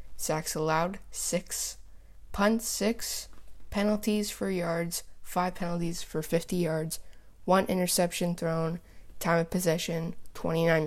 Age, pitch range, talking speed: 20-39, 160-190 Hz, 110 wpm